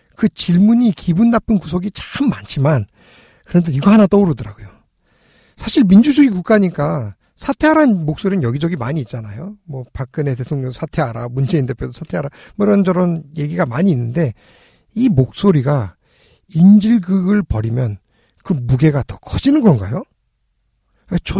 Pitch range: 130-200 Hz